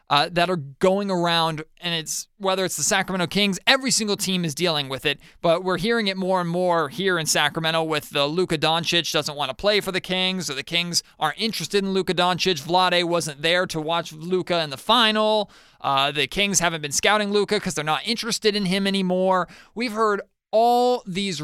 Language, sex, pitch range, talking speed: English, male, 160-195 Hz, 210 wpm